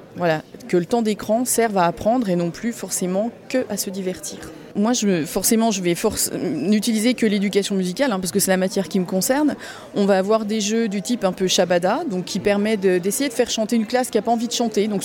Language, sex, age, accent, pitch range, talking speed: French, female, 30-49, French, 190-235 Hz, 245 wpm